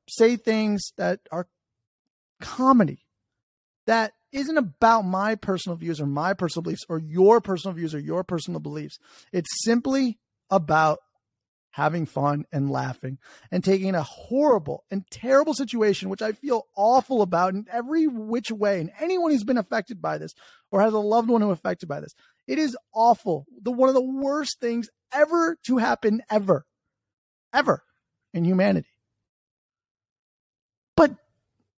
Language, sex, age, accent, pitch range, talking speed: English, male, 30-49, American, 170-245 Hz, 150 wpm